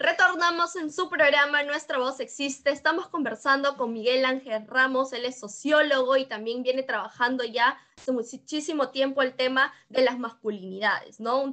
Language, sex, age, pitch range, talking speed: Spanish, female, 20-39, 230-285 Hz, 160 wpm